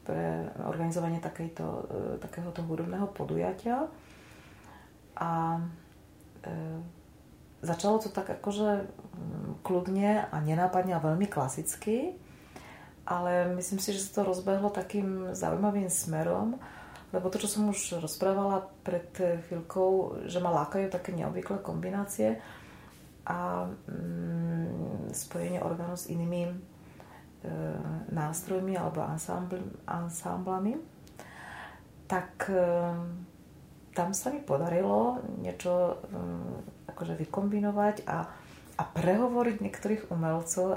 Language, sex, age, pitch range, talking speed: Slovak, female, 30-49, 160-195 Hz, 95 wpm